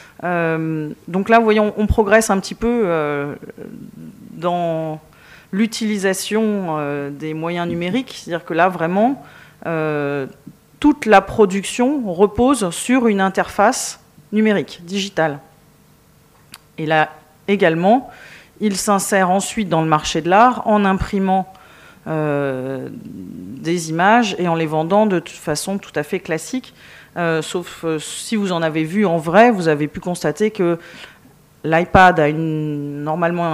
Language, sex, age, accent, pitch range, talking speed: French, female, 40-59, French, 155-195 Hz, 140 wpm